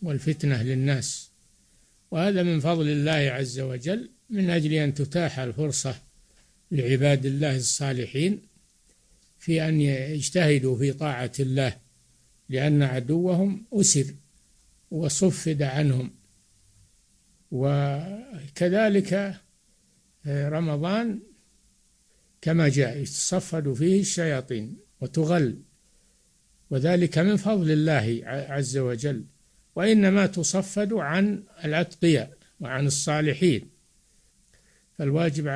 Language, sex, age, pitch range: Arabic, male, 60-79, 135-170 Hz